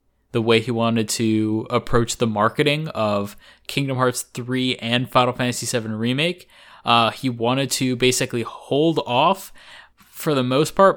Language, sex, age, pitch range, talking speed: English, male, 20-39, 105-130 Hz, 155 wpm